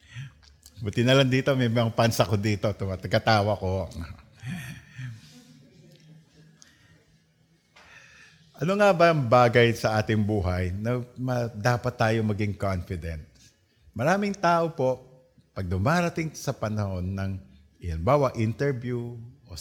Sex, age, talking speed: male, 50-69, 105 wpm